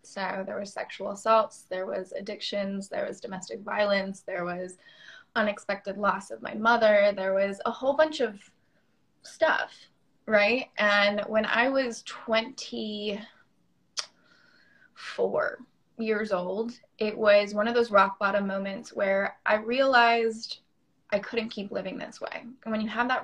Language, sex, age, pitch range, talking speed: English, female, 20-39, 195-225 Hz, 145 wpm